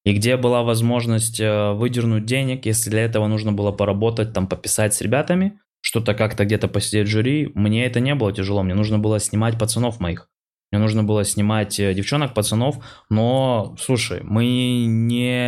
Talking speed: 165 wpm